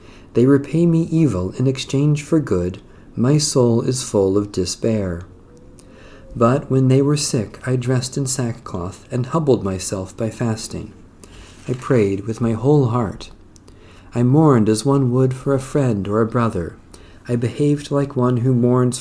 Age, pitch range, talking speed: 40-59, 95-135 Hz, 160 wpm